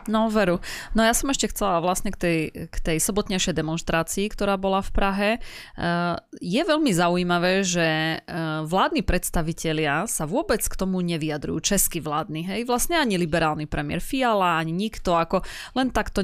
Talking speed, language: 160 wpm, Slovak